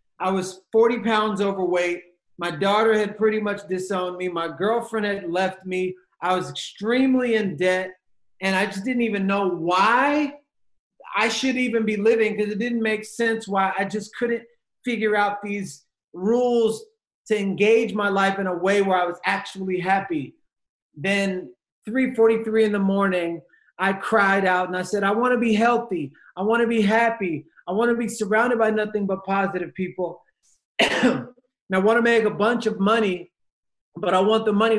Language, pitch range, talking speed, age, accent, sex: English, 185-225 Hz, 175 wpm, 30-49, American, male